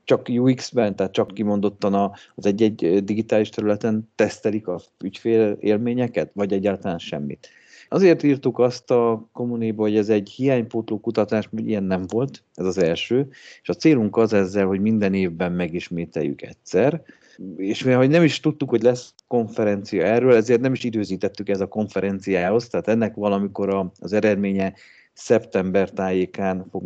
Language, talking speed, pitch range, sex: Hungarian, 145 wpm, 95-120 Hz, male